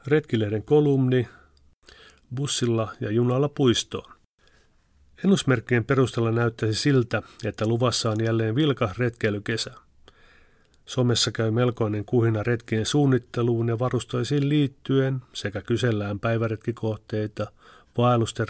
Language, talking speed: English, 95 wpm